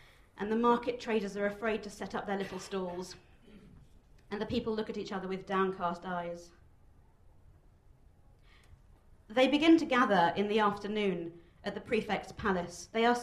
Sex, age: female, 40-59